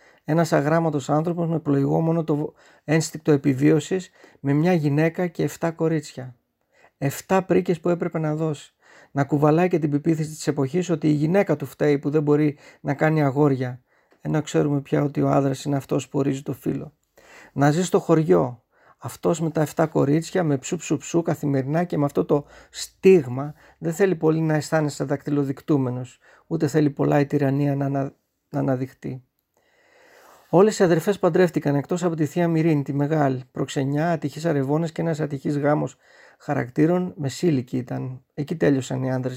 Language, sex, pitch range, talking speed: Greek, male, 140-170 Hz, 165 wpm